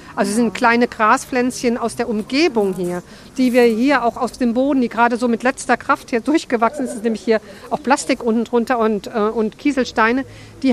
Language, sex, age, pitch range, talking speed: German, female, 50-69, 220-260 Hz, 200 wpm